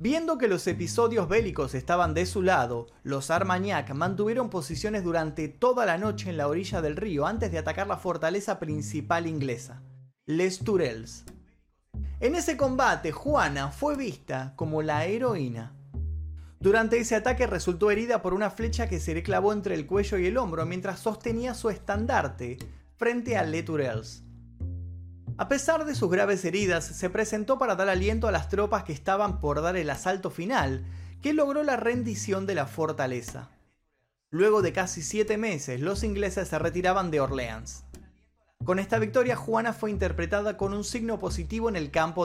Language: Spanish